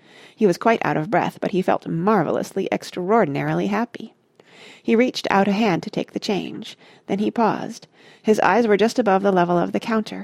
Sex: female